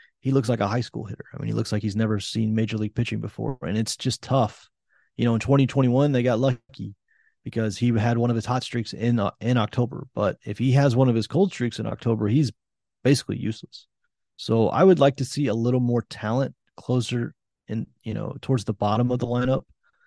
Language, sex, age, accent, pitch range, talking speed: English, male, 30-49, American, 110-125 Hz, 225 wpm